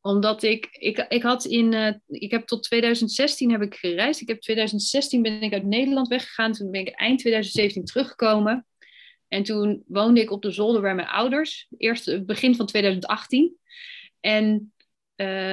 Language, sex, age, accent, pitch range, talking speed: Dutch, female, 30-49, Dutch, 180-225 Hz, 160 wpm